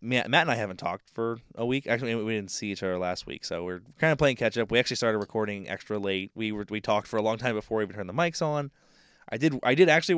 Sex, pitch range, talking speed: male, 100-125 Hz, 285 wpm